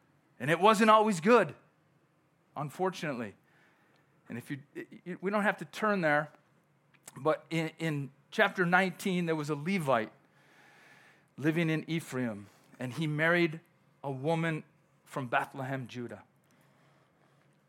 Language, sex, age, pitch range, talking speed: English, male, 40-59, 130-165 Hz, 120 wpm